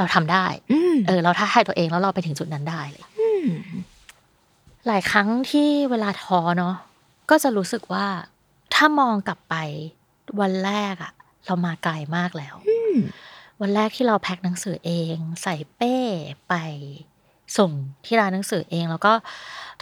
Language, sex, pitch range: Thai, female, 170-215 Hz